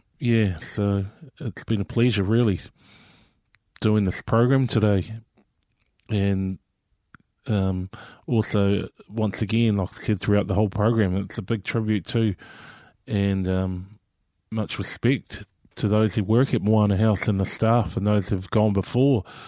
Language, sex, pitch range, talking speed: English, male, 100-115 Hz, 150 wpm